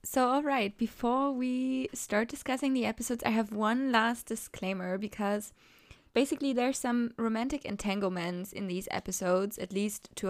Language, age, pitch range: English, 20-39, 195-255 Hz